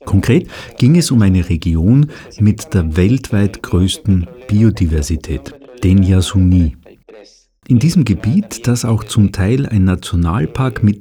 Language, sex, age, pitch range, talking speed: German, male, 50-69, 90-120 Hz, 125 wpm